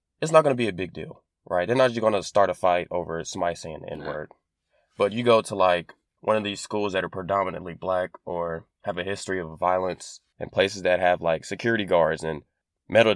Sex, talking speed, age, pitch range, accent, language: male, 230 wpm, 20-39, 85-100 Hz, American, English